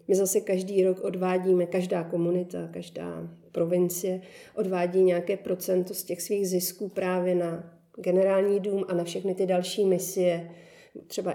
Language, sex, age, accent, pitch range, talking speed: Czech, female, 40-59, native, 180-210 Hz, 145 wpm